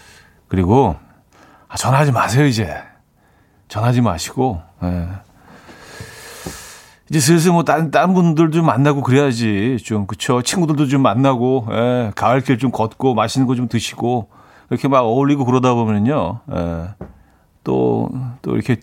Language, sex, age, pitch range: Korean, male, 40-59, 100-135 Hz